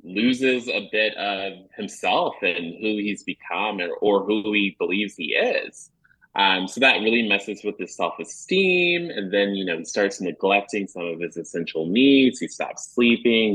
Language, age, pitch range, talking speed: English, 20-39, 95-120 Hz, 175 wpm